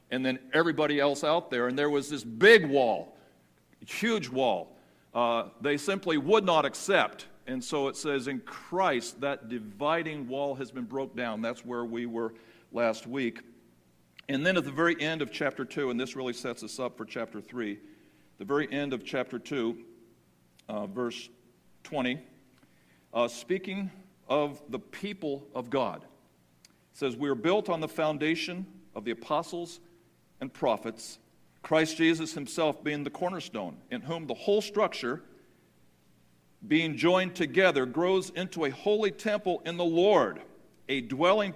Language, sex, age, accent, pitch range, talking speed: English, male, 50-69, American, 125-170 Hz, 160 wpm